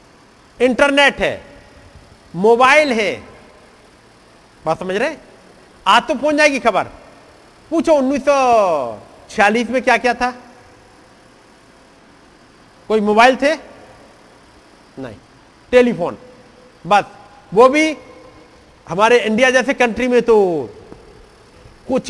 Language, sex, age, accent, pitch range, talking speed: Hindi, male, 50-69, native, 195-250 Hz, 90 wpm